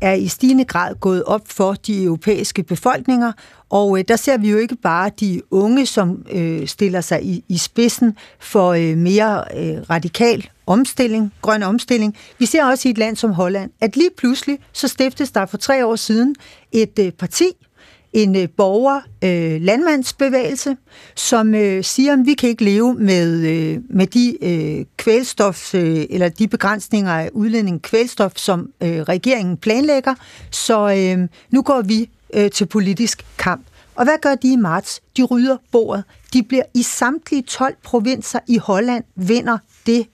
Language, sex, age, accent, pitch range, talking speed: Danish, female, 60-79, native, 190-245 Hz, 145 wpm